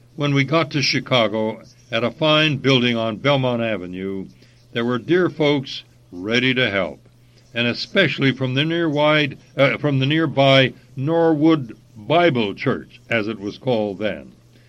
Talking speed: 140 wpm